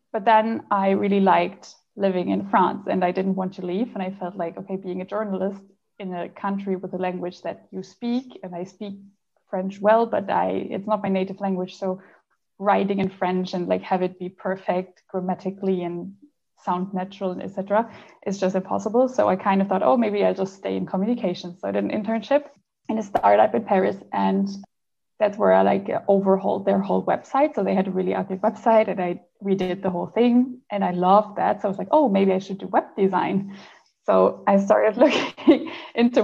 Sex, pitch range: female, 185-215 Hz